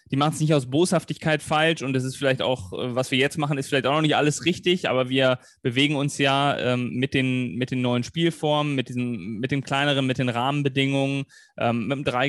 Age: 20-39